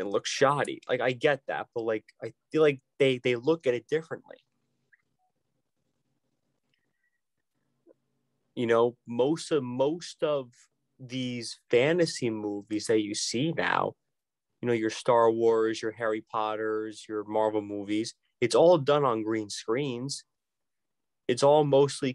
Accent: American